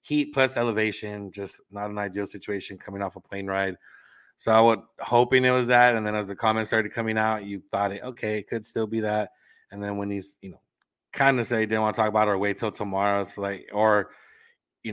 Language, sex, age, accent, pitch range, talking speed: English, male, 30-49, American, 100-110 Hz, 240 wpm